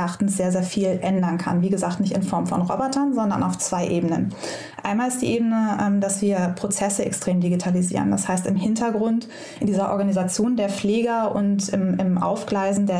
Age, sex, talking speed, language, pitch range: 20-39, female, 170 wpm, German, 190-220 Hz